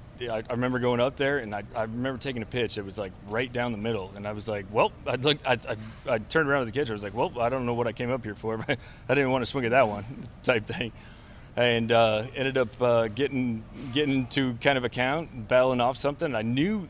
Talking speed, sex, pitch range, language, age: 265 wpm, male, 110-130 Hz, English, 30-49